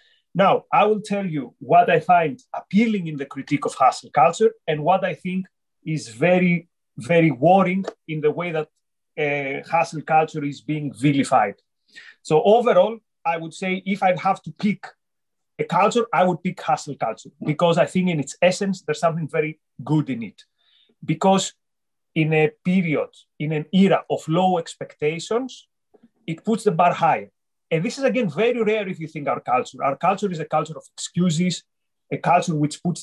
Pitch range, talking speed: 155-200 Hz, 180 wpm